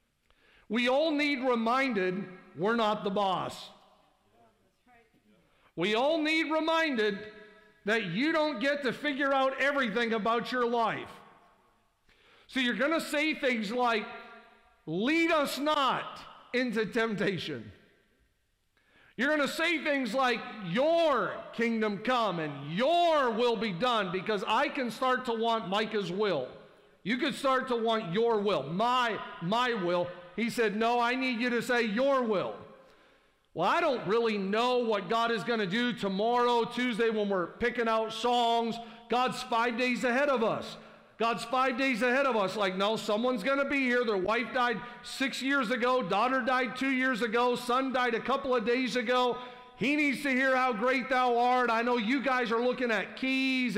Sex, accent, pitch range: male, American, 225-260 Hz